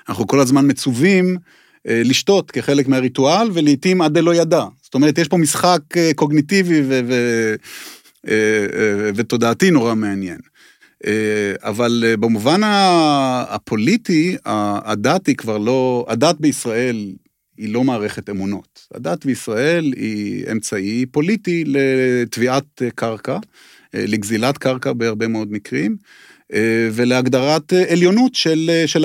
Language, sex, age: Hebrew, male, 30-49